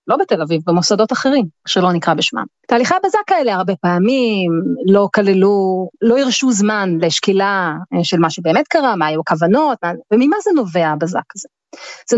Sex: female